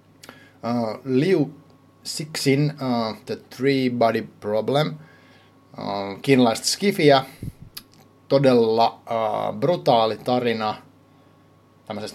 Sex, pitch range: male, 110-135 Hz